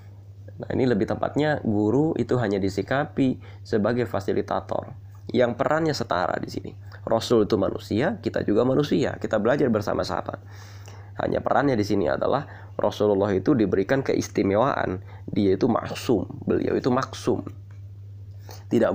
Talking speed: 125 wpm